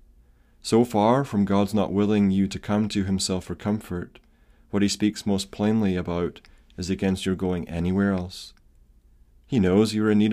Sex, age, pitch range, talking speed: male, 30-49, 90-105 Hz, 180 wpm